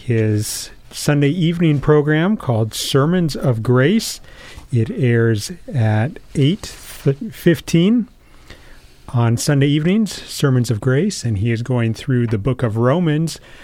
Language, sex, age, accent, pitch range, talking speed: English, male, 40-59, American, 115-155 Hz, 120 wpm